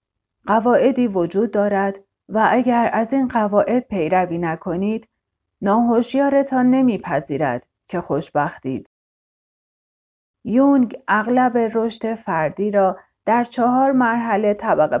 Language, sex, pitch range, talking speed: Persian, female, 185-235 Hz, 90 wpm